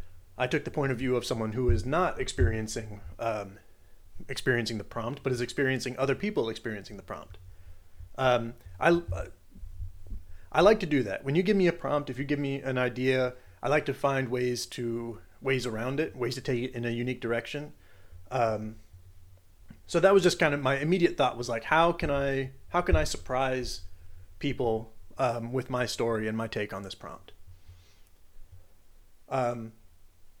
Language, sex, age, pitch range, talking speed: English, male, 30-49, 95-130 Hz, 180 wpm